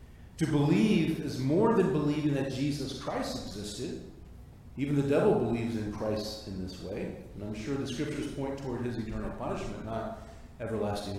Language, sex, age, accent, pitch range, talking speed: English, male, 40-59, American, 115-150 Hz, 165 wpm